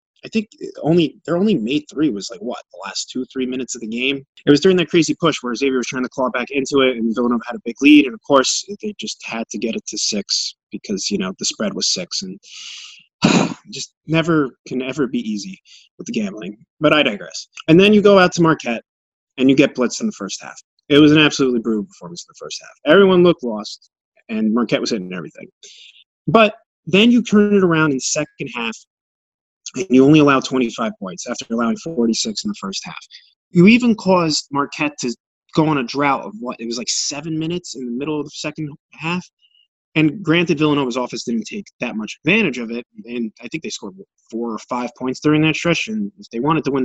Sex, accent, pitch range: male, American, 120-175 Hz